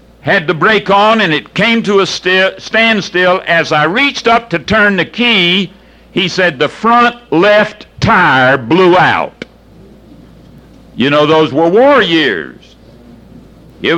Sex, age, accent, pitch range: male, 60-79, American, 175-225 Hz